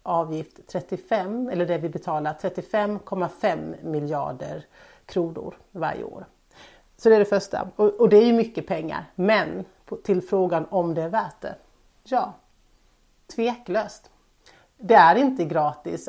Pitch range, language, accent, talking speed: 160-205 Hz, Swedish, native, 130 wpm